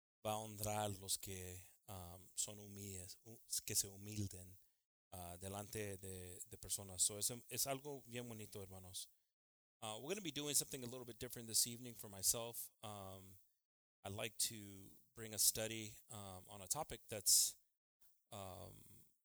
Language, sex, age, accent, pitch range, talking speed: English, male, 30-49, American, 100-125 Hz, 120 wpm